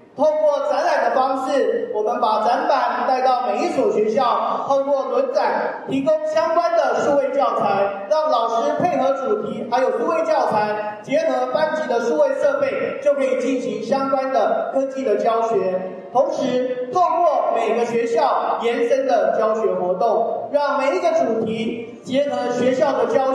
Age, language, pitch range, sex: 30-49, Chinese, 235-310 Hz, male